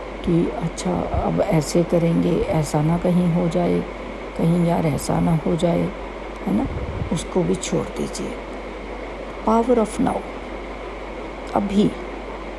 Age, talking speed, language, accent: 60-79, 125 wpm, Hindi, native